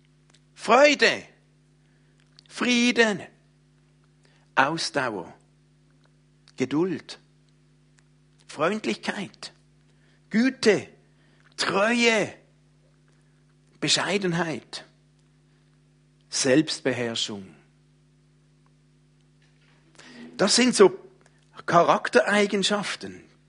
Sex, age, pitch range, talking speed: male, 60-79, 145-190 Hz, 35 wpm